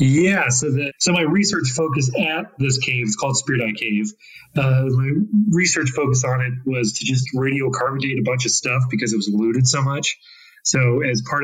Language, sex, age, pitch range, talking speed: English, male, 30-49, 110-130 Hz, 205 wpm